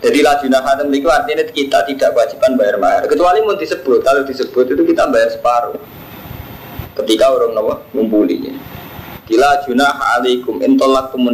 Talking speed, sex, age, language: 150 wpm, male, 20-39, Indonesian